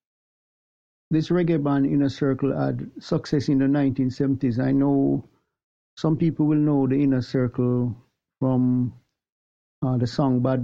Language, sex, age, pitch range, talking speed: English, male, 60-79, 125-140 Hz, 135 wpm